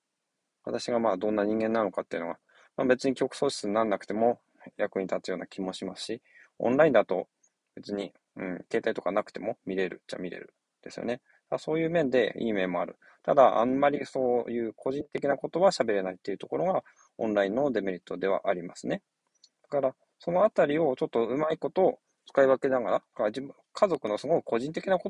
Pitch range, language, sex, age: 105-140 Hz, Japanese, male, 20-39